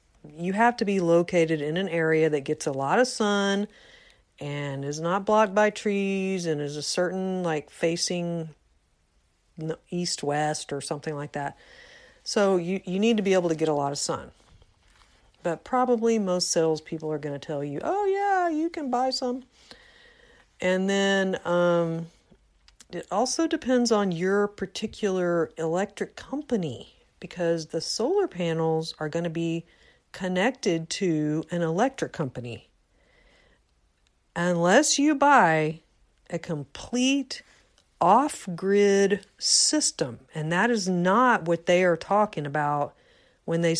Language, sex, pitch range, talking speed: English, female, 155-210 Hz, 140 wpm